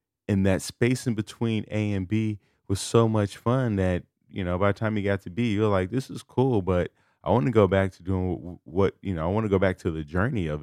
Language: English